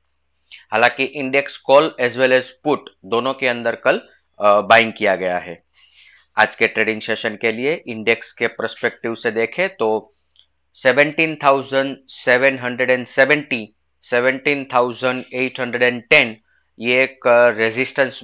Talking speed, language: 140 wpm, Hindi